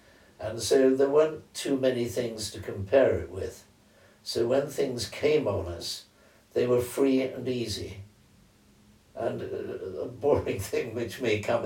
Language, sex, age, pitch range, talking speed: English, male, 60-79, 105-130 Hz, 150 wpm